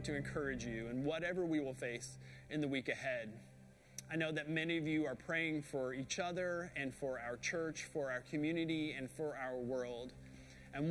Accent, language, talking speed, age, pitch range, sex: American, English, 195 wpm, 30-49, 125-165 Hz, male